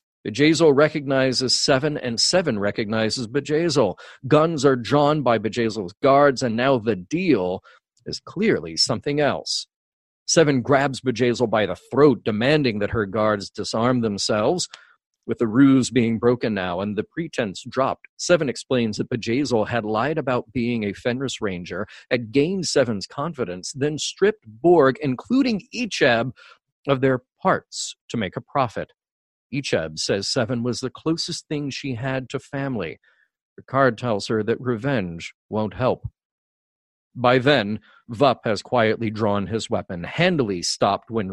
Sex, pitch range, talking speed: male, 110-145 Hz, 145 wpm